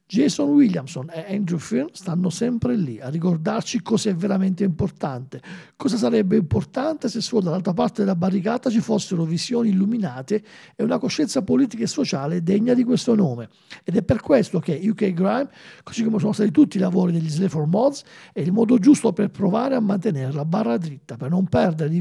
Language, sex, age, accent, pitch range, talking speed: Italian, male, 50-69, native, 165-220 Hz, 190 wpm